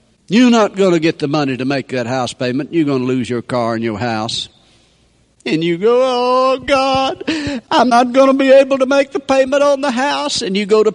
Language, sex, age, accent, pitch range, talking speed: English, male, 60-79, American, 130-195 Hz, 220 wpm